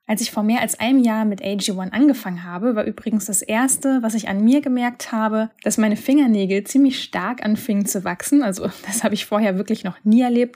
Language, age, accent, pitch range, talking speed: German, 10-29, German, 190-245 Hz, 215 wpm